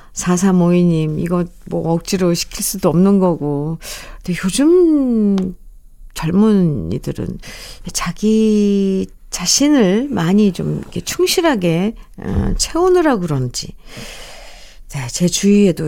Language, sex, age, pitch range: Korean, female, 50-69, 180-265 Hz